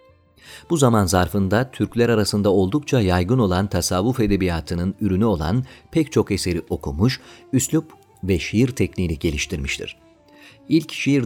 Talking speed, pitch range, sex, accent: 125 wpm, 95-120 Hz, male, native